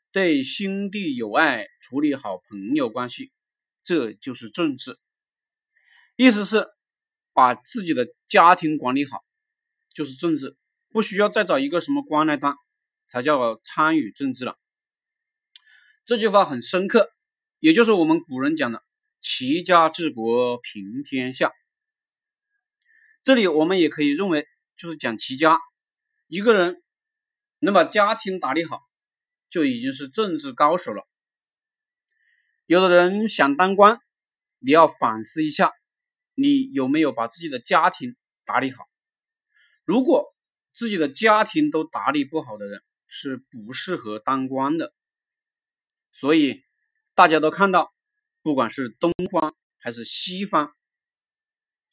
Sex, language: male, Chinese